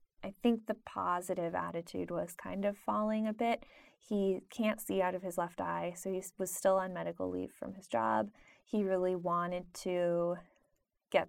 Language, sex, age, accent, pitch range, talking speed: English, female, 20-39, American, 175-205 Hz, 180 wpm